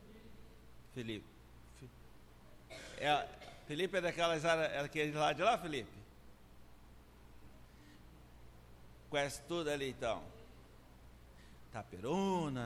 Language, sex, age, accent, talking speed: Portuguese, male, 60-79, Brazilian, 75 wpm